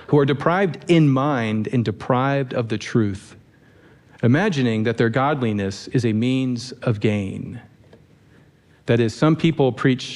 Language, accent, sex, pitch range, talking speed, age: English, American, male, 120-155 Hz, 140 wpm, 40-59